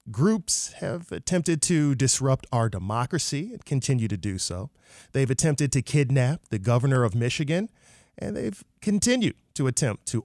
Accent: American